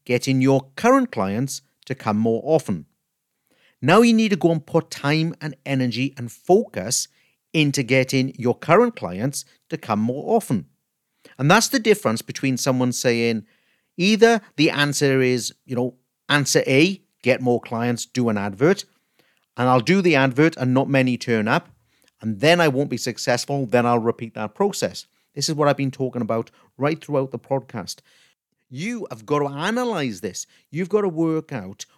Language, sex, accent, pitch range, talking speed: English, male, British, 120-160 Hz, 175 wpm